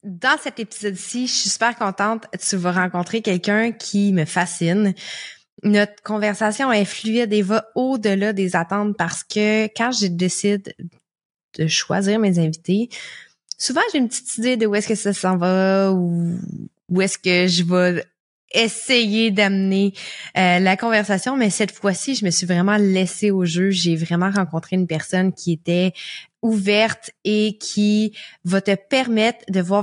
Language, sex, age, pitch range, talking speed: French, female, 20-39, 180-220 Hz, 160 wpm